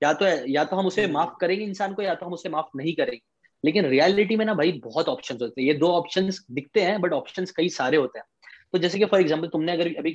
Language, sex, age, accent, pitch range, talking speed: Hindi, male, 20-39, native, 155-195 Hz, 265 wpm